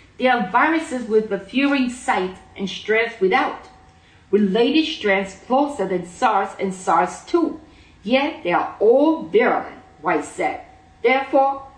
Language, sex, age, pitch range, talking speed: English, female, 40-59, 190-265 Hz, 130 wpm